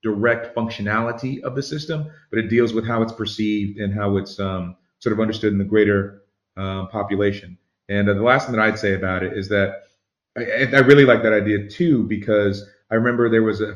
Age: 30-49